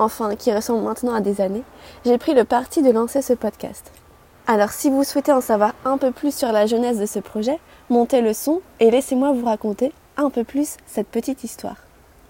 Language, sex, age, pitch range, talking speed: French, female, 20-39, 220-265 Hz, 210 wpm